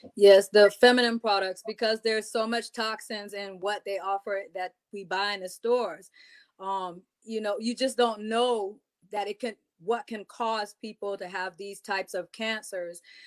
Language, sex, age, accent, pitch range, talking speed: English, female, 20-39, American, 185-230 Hz, 175 wpm